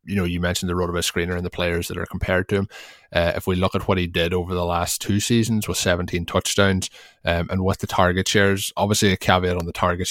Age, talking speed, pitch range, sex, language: 20-39, 260 wpm, 90-100 Hz, male, English